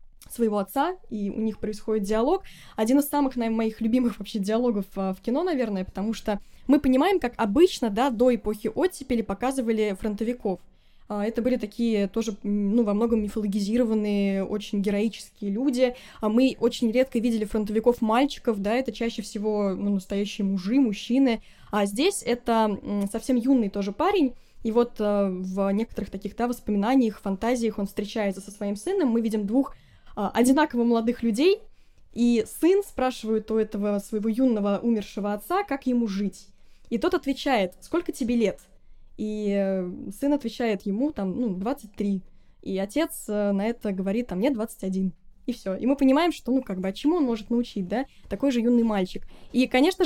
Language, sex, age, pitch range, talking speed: Russian, female, 10-29, 205-255 Hz, 160 wpm